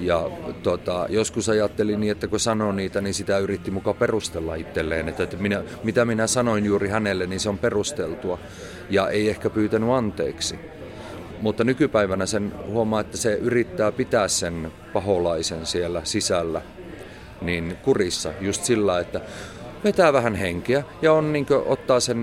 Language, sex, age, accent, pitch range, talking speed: Finnish, male, 30-49, native, 95-115 Hz, 155 wpm